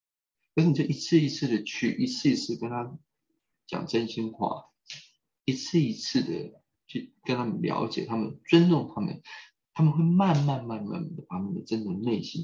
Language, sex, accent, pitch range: Chinese, male, native, 125-175 Hz